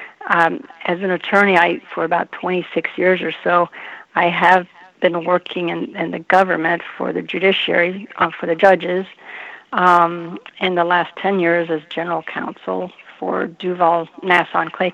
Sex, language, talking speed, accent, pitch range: female, English, 165 wpm, American, 175-205 Hz